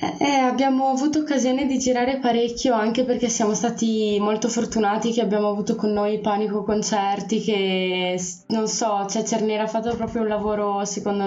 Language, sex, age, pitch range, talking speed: Italian, female, 20-39, 210-235 Hz, 165 wpm